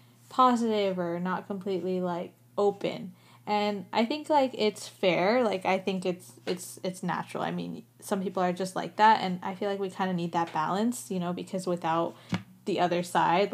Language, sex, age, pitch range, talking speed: English, female, 10-29, 175-210 Hz, 195 wpm